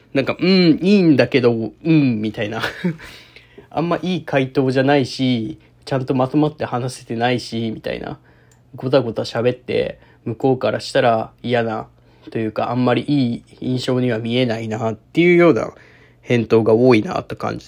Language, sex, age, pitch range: Japanese, male, 20-39, 110-135 Hz